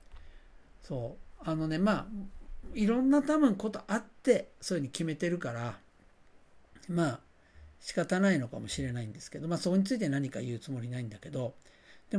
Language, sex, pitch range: Japanese, male, 120-200 Hz